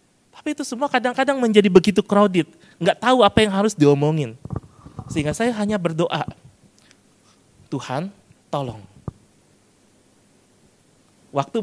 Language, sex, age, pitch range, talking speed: Indonesian, male, 30-49, 180-245 Hz, 105 wpm